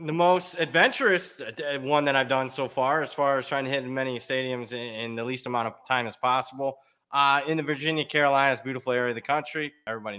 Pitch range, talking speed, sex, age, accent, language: 120-155 Hz, 210 wpm, male, 20-39, American, English